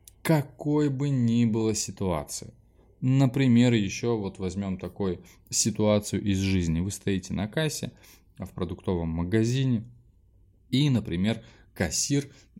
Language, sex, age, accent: Russian, male, 20-39, native